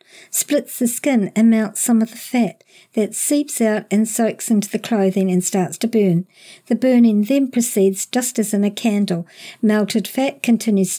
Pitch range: 200-240 Hz